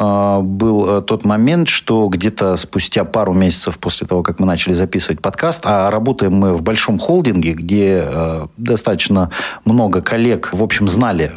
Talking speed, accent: 150 wpm, native